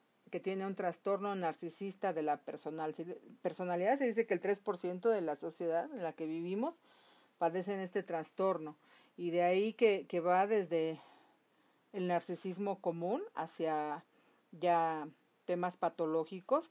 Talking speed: 135 wpm